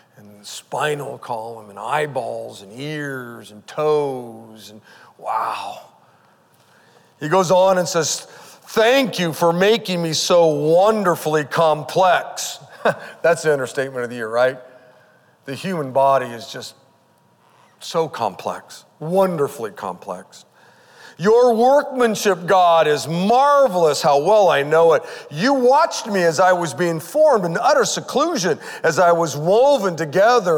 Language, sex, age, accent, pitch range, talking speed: English, male, 50-69, American, 155-225 Hz, 130 wpm